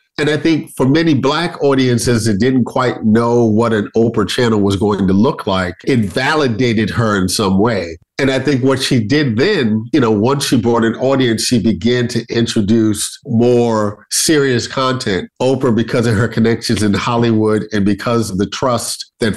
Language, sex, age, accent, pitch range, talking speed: English, male, 50-69, American, 110-130 Hz, 185 wpm